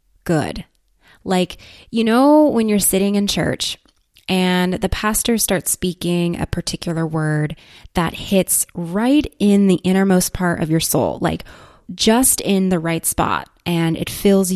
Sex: female